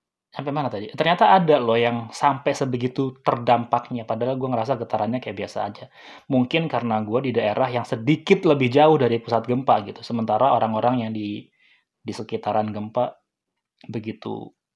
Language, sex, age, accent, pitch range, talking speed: Indonesian, male, 20-39, native, 110-140 Hz, 155 wpm